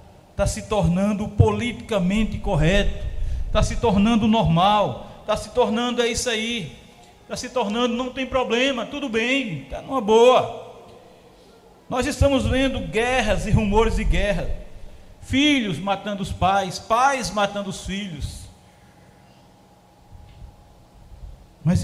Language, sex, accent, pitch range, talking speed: Portuguese, male, Brazilian, 190-265 Hz, 120 wpm